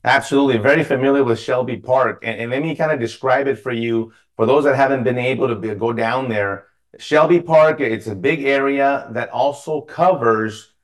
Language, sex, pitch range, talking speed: English, male, 115-135 Hz, 200 wpm